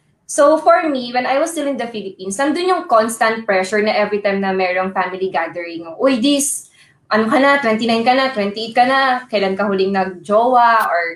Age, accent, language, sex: 20-39, Filipino, English, female